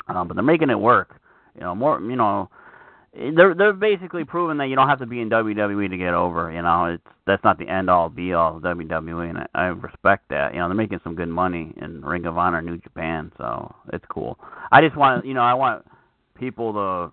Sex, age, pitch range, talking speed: male, 30-49, 95-135 Hz, 230 wpm